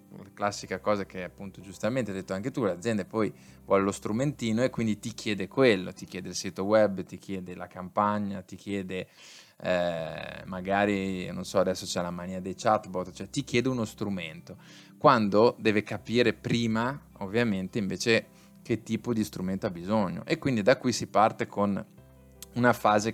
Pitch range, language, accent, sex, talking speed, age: 95-110 Hz, Italian, native, male, 175 wpm, 20-39